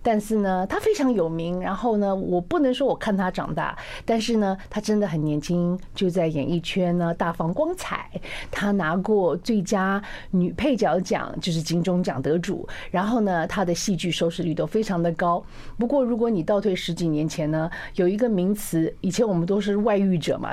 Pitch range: 170-215 Hz